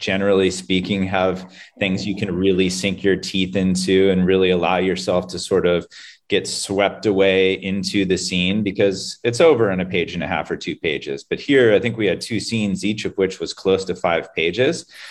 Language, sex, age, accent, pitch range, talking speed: English, male, 30-49, American, 90-100 Hz, 205 wpm